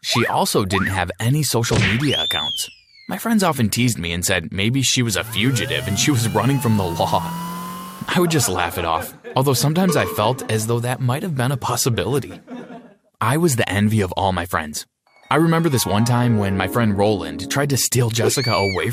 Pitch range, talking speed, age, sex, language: 100-135 Hz, 210 wpm, 20-39, male, English